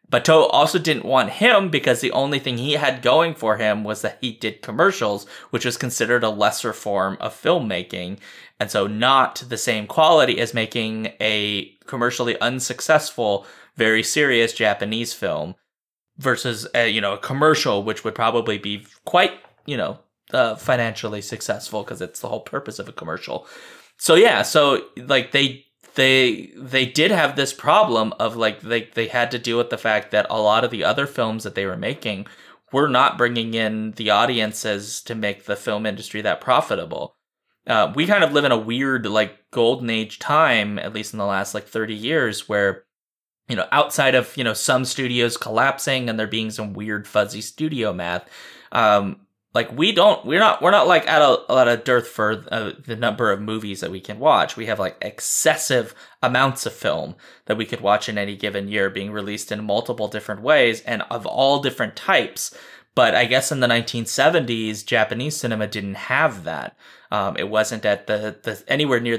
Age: 20-39